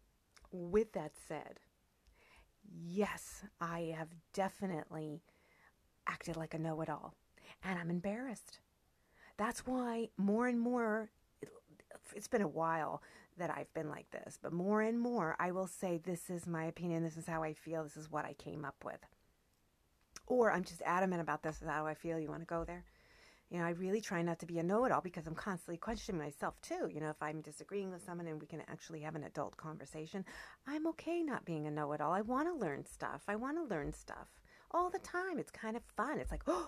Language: English